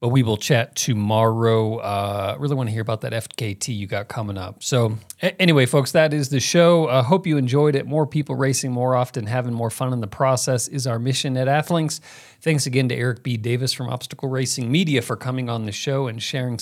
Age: 40-59